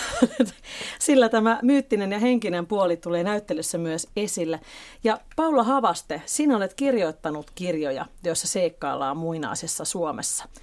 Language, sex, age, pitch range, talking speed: Finnish, female, 40-59, 165-225 Hz, 120 wpm